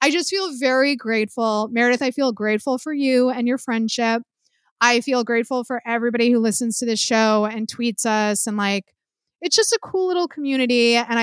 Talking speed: 190 wpm